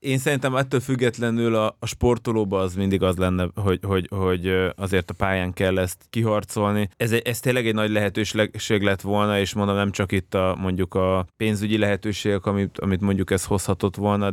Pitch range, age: 95-110 Hz, 20-39